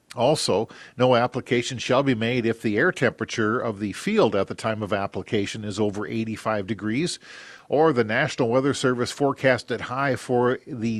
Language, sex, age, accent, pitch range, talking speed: English, male, 50-69, American, 110-130 Hz, 175 wpm